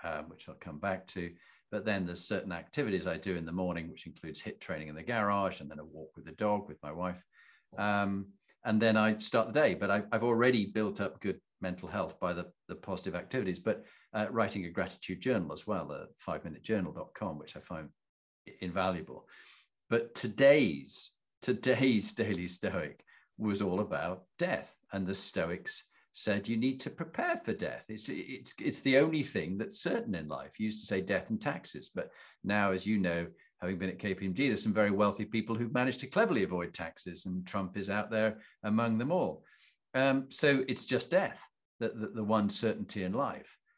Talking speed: 200 wpm